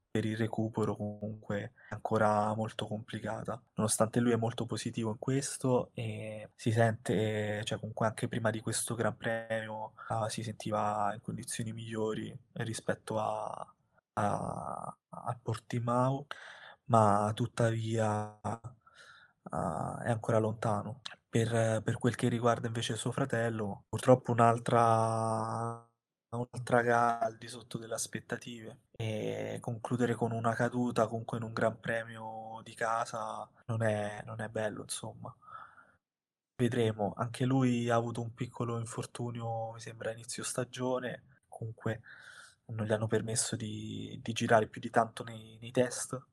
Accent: native